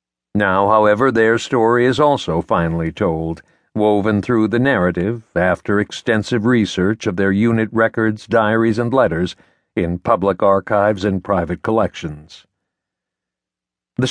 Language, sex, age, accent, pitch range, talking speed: English, male, 60-79, American, 100-130 Hz, 125 wpm